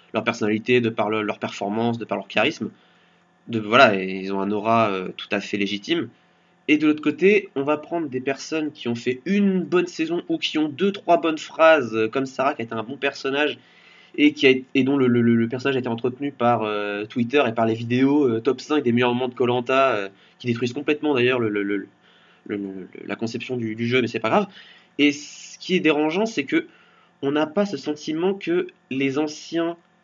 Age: 20-39